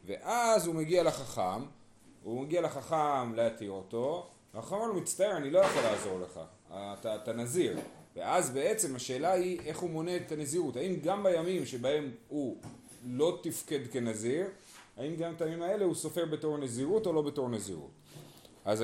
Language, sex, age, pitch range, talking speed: Hebrew, male, 30-49, 130-185 Hz, 160 wpm